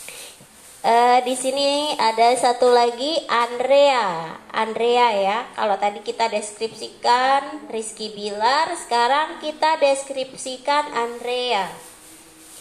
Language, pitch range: Indonesian, 230-290 Hz